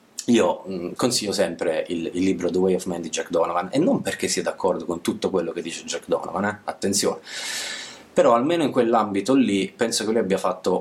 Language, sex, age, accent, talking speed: Italian, male, 30-49, native, 210 wpm